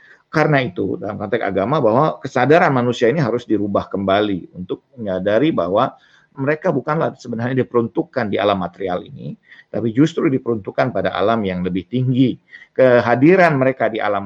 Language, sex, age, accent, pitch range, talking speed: Indonesian, male, 50-69, native, 105-135 Hz, 145 wpm